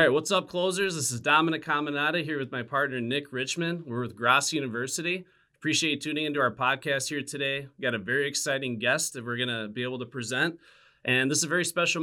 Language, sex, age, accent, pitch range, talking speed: English, male, 30-49, American, 120-145 Hz, 235 wpm